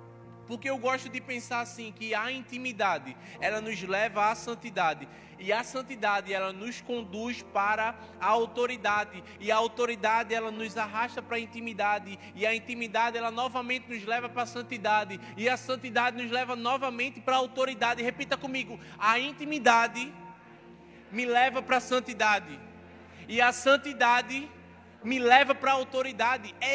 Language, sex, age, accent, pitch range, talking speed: Portuguese, male, 20-39, Brazilian, 230-290 Hz, 155 wpm